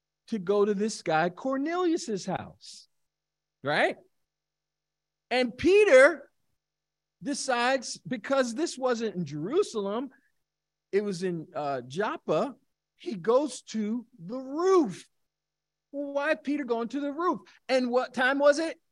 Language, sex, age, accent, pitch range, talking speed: English, male, 50-69, American, 180-260 Hz, 115 wpm